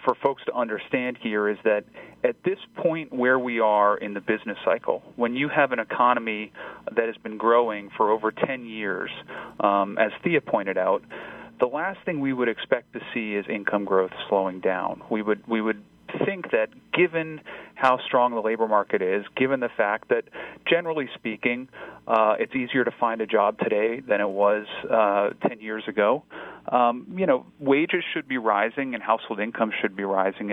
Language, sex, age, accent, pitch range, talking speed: English, male, 40-59, American, 105-135 Hz, 185 wpm